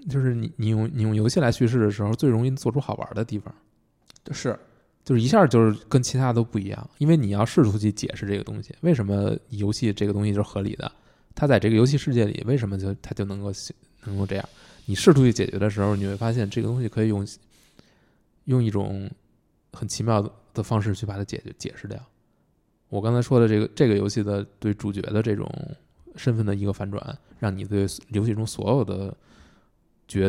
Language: Chinese